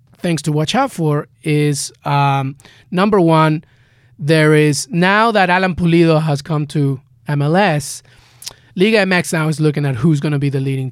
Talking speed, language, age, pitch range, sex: 170 wpm, English, 30-49, 130-155 Hz, male